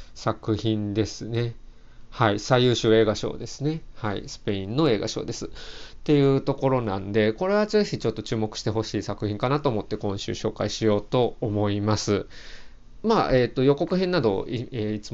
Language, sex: Japanese, male